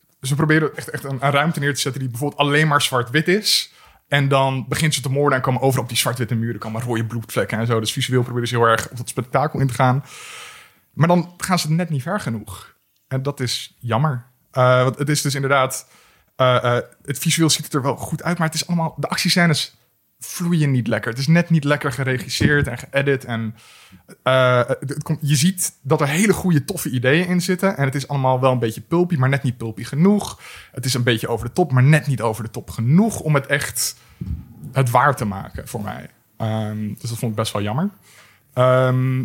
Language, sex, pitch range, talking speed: Dutch, male, 120-155 Hz, 230 wpm